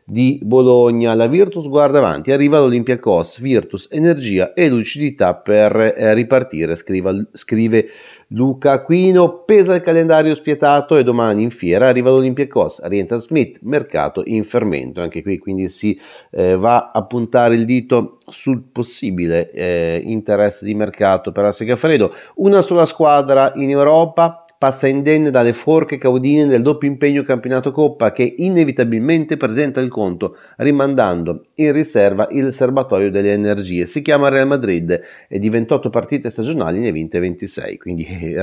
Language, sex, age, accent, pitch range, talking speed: Italian, male, 30-49, native, 105-145 Hz, 150 wpm